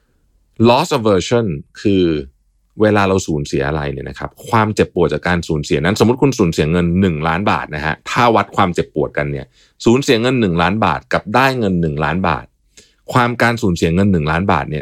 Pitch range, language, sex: 75-100 Hz, Thai, male